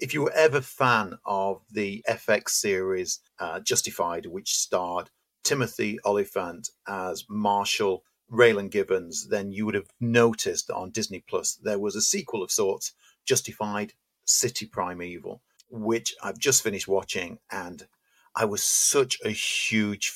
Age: 50-69